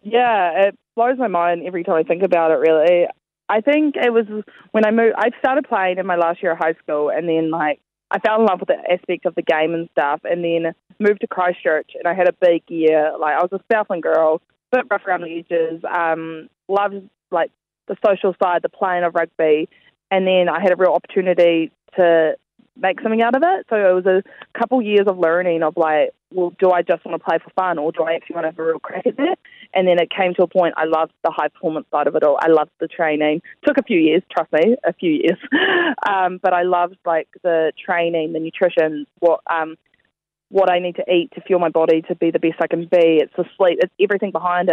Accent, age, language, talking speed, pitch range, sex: Australian, 20-39, English, 245 wpm, 165-200 Hz, female